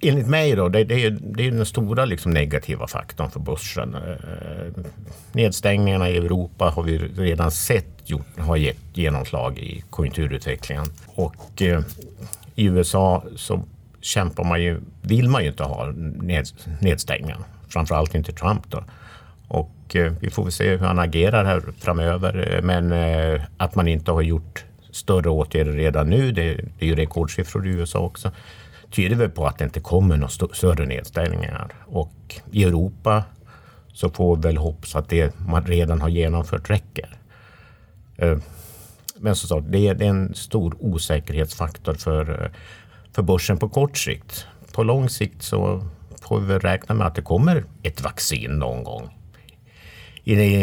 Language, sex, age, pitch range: Swedish, male, 50-69, 80-105 Hz